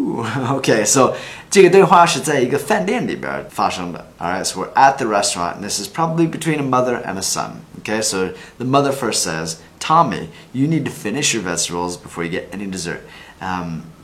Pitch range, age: 85-130 Hz, 20-39